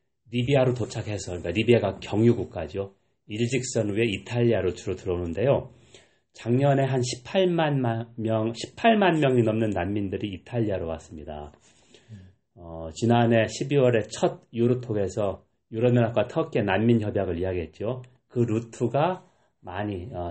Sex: male